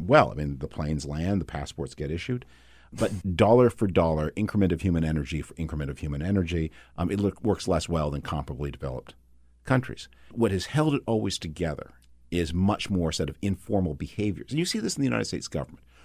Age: 50-69